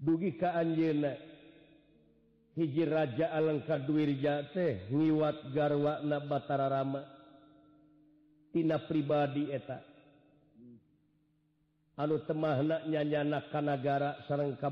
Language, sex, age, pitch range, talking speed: Indonesian, male, 50-69, 135-155 Hz, 60 wpm